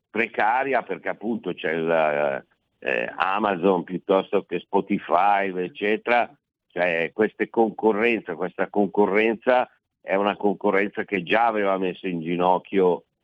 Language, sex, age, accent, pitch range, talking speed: Italian, male, 60-79, native, 95-115 Hz, 115 wpm